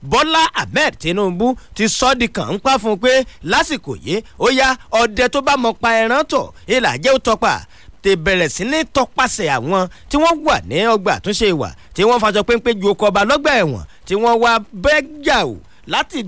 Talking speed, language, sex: 175 wpm, English, male